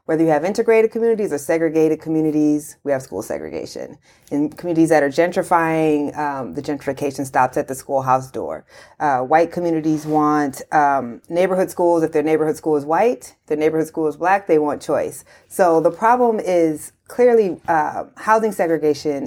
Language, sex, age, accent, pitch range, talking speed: English, female, 30-49, American, 140-170 Hz, 170 wpm